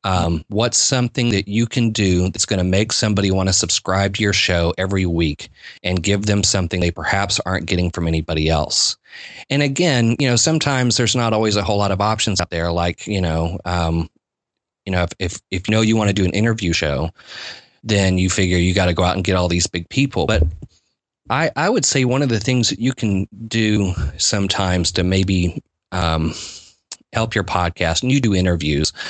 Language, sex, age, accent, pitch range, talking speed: English, male, 30-49, American, 90-115 Hz, 210 wpm